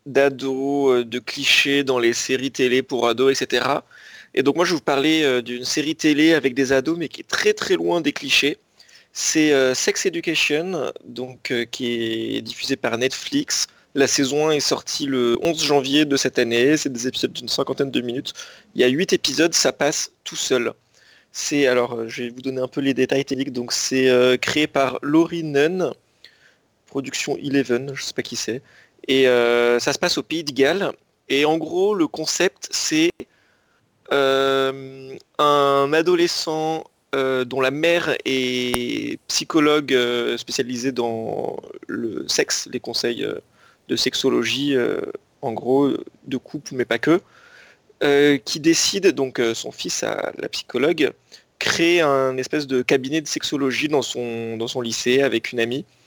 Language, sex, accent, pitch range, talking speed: French, male, French, 125-155 Hz, 170 wpm